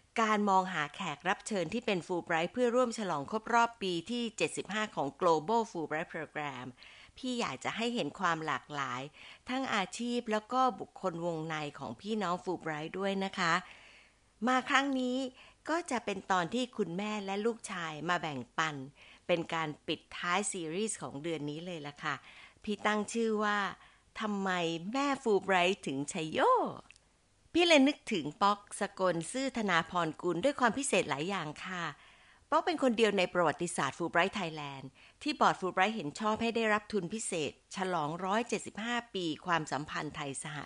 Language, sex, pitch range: Thai, female, 165-225 Hz